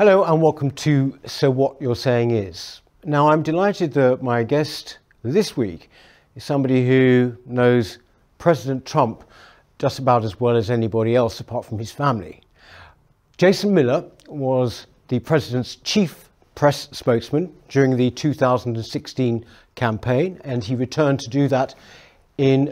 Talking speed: 140 wpm